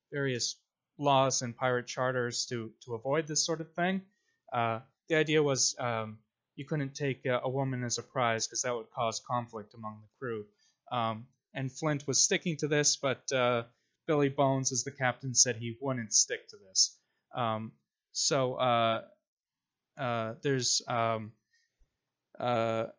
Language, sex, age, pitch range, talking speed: English, male, 20-39, 115-145 Hz, 160 wpm